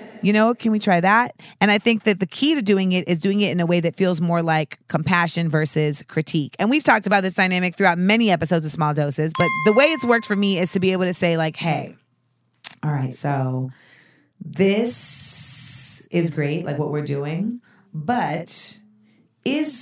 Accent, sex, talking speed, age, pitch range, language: American, female, 205 wpm, 30-49, 150-205 Hz, English